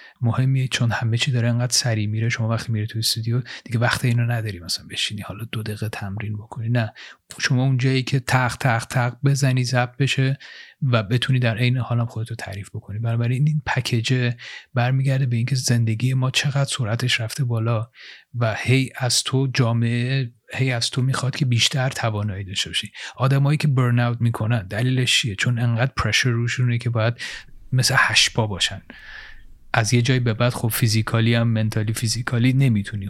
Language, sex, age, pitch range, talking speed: Persian, male, 30-49, 110-125 Hz, 170 wpm